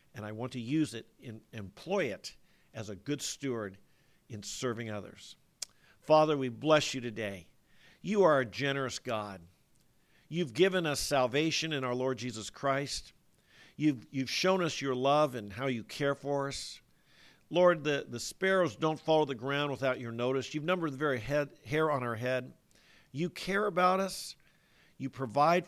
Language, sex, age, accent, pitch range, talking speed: English, male, 50-69, American, 125-165 Hz, 170 wpm